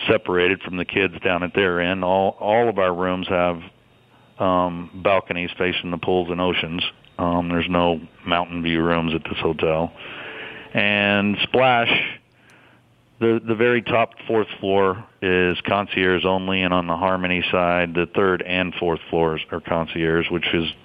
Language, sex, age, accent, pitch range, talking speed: English, male, 40-59, American, 85-95 Hz, 160 wpm